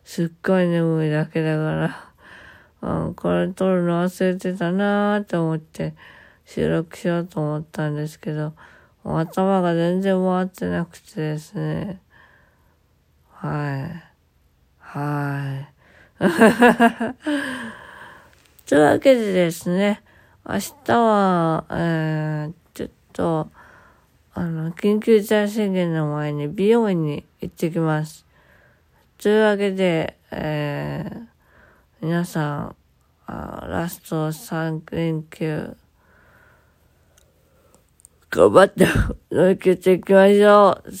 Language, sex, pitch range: Japanese, female, 150-195 Hz